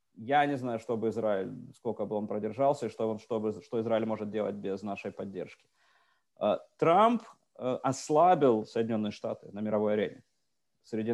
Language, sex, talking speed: English, male, 145 wpm